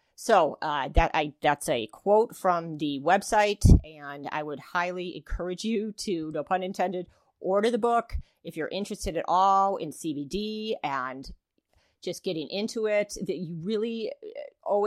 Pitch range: 155-195 Hz